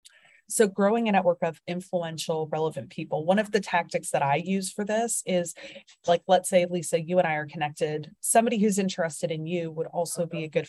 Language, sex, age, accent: English, female, 30-49, American